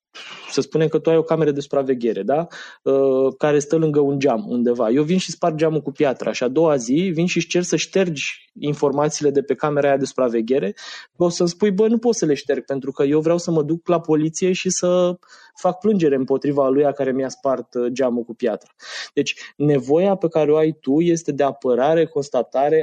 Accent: native